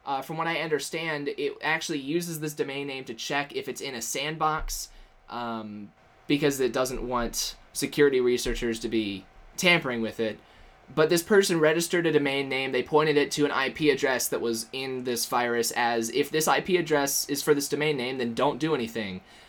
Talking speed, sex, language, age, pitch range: 195 wpm, male, English, 20-39, 115-150 Hz